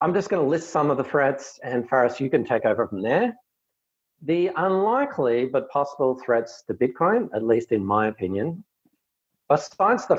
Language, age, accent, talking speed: English, 40-59, Australian, 185 wpm